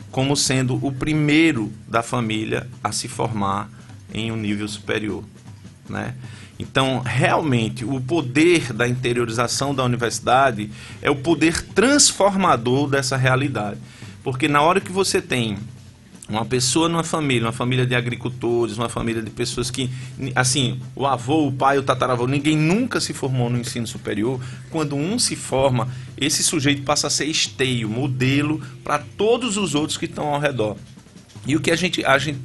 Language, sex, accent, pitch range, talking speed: Portuguese, male, Brazilian, 120-150 Hz, 160 wpm